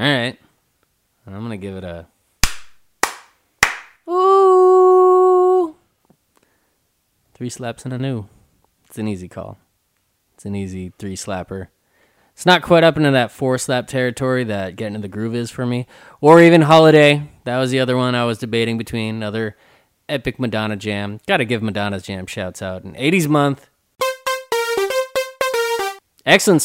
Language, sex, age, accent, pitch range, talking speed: English, male, 20-39, American, 110-145 Hz, 150 wpm